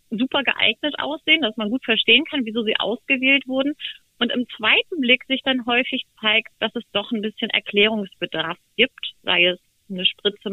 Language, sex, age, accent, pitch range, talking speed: German, female, 30-49, German, 205-250 Hz, 175 wpm